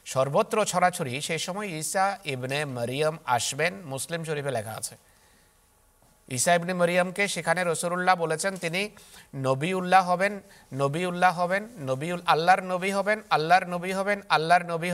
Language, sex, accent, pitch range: Bengali, male, native, 140-200 Hz